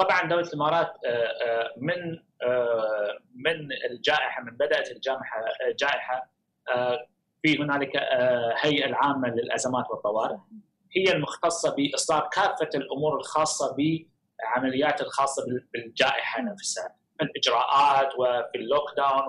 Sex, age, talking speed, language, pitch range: male, 30-49, 85 wpm, Arabic, 130-170 Hz